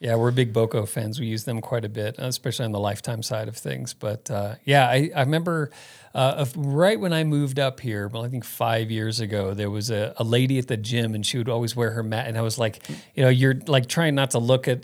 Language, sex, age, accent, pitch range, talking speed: English, male, 40-59, American, 115-135 Hz, 265 wpm